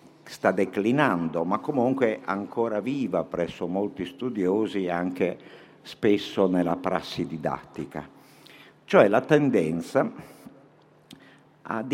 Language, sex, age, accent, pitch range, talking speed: Italian, male, 50-69, native, 85-125 Hz, 90 wpm